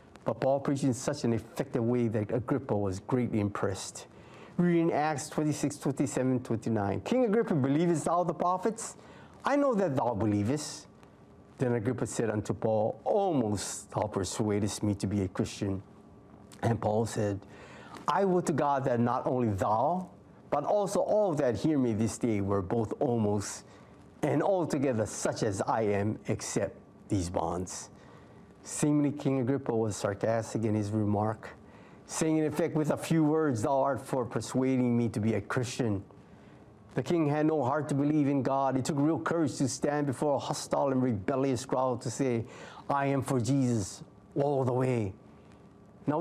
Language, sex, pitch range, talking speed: English, male, 110-145 Hz, 165 wpm